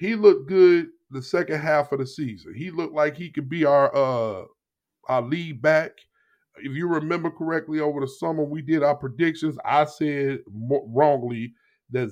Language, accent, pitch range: English, American, 130-155 Hz